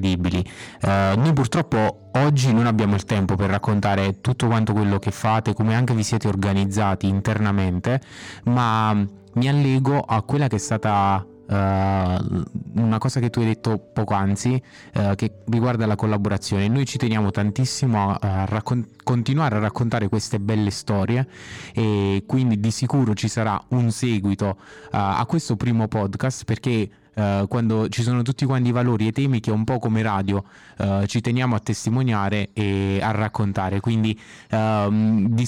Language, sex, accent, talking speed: Italian, male, native, 160 wpm